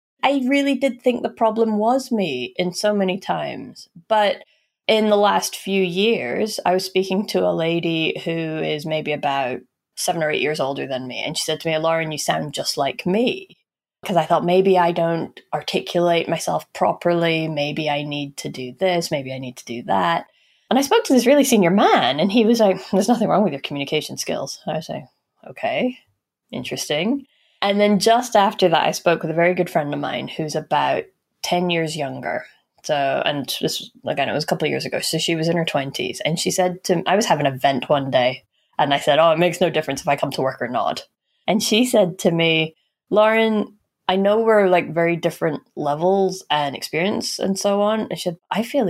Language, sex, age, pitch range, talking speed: English, female, 20-39, 155-210 Hz, 215 wpm